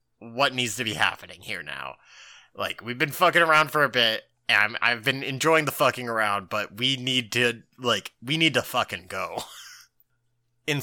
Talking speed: 190 wpm